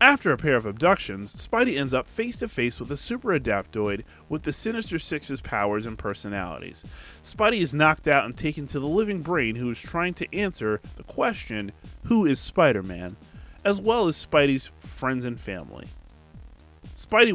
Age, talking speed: 30-49, 165 wpm